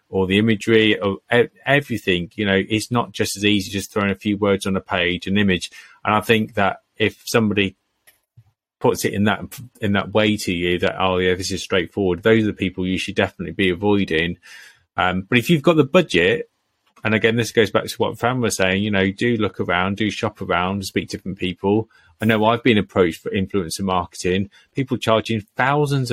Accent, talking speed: British, 210 wpm